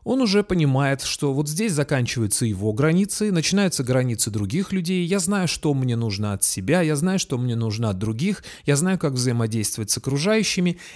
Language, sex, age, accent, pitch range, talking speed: Russian, male, 30-49, native, 110-160 Hz, 180 wpm